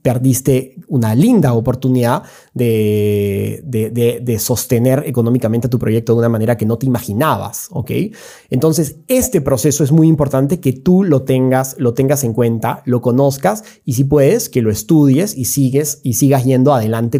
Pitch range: 120-150 Hz